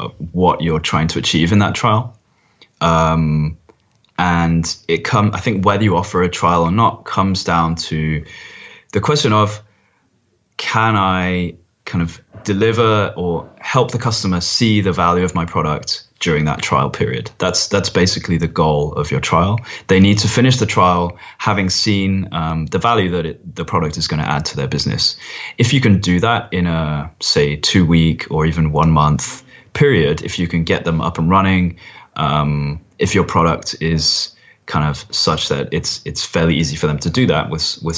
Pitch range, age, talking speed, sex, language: 80-100 Hz, 20-39, 190 wpm, male, English